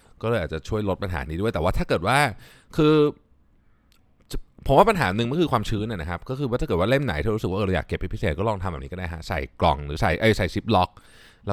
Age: 20-39